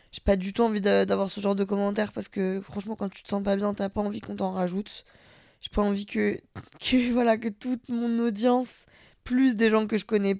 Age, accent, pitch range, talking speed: 20-39, French, 205-235 Hz, 240 wpm